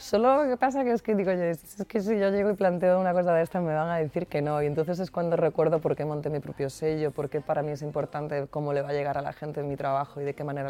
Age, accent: 20-39, Spanish